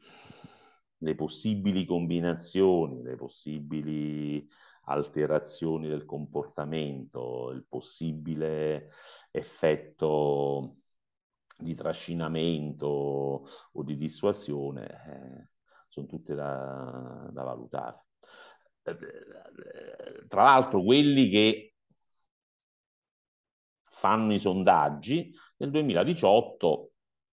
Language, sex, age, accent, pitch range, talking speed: Italian, male, 50-69, native, 70-90 Hz, 70 wpm